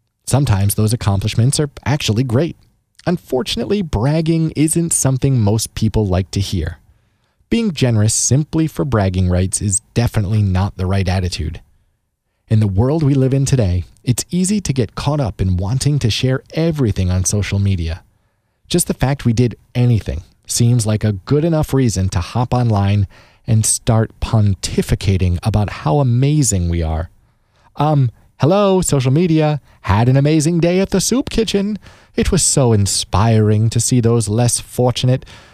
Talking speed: 155 wpm